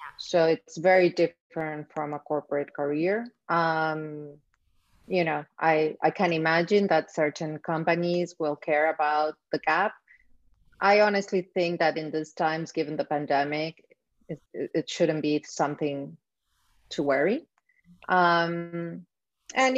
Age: 30-49